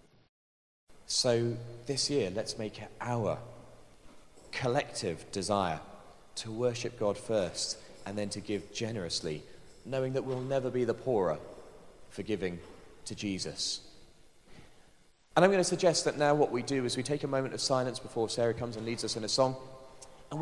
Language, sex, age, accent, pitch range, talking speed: English, male, 30-49, British, 100-130 Hz, 165 wpm